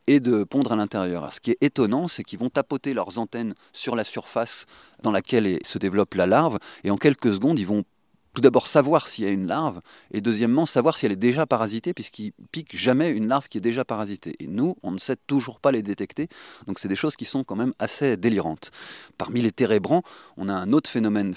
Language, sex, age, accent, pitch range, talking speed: French, male, 30-49, French, 100-130 Hz, 230 wpm